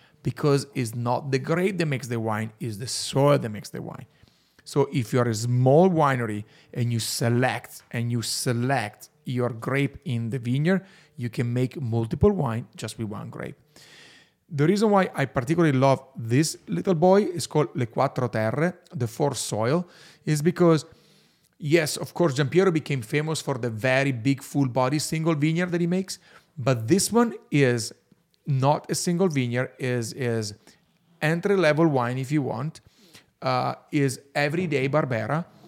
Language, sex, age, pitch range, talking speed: English, male, 30-49, 125-165 Hz, 160 wpm